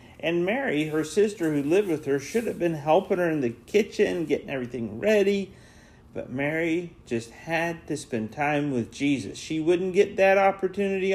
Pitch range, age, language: 120-170 Hz, 40-59, English